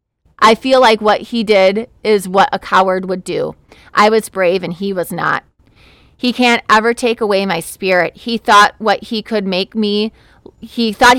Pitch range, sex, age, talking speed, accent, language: 185-220 Hz, female, 30-49, 190 wpm, American, English